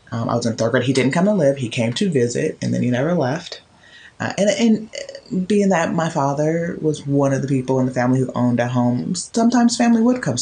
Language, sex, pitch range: English, female, 115-185 Hz